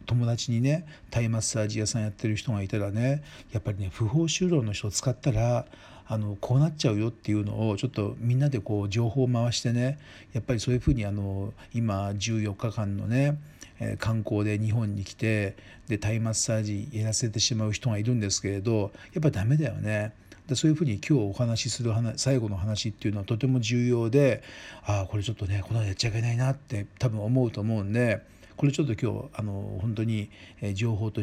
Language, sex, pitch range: Japanese, male, 100-125 Hz